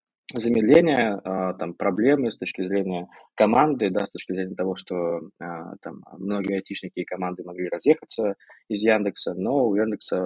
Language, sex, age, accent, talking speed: Russian, male, 20-39, native, 145 wpm